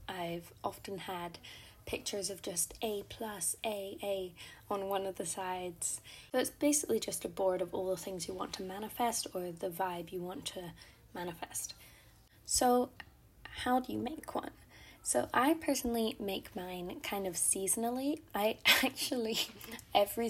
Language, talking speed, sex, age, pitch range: English, 155 wpm, female, 10-29, 180-215 Hz